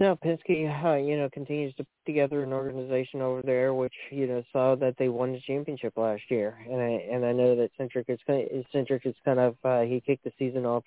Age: 20-39